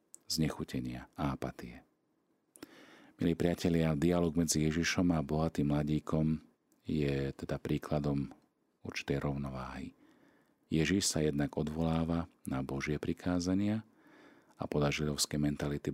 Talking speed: 100 wpm